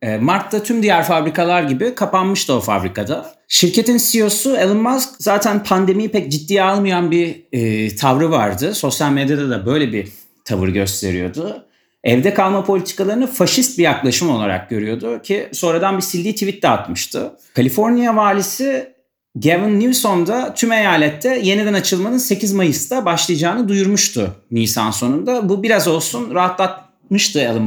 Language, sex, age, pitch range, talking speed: Turkish, male, 30-49, 140-205 Hz, 135 wpm